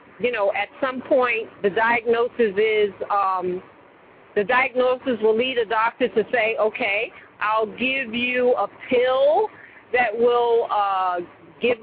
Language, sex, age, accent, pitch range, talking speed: English, female, 50-69, American, 205-265 Hz, 135 wpm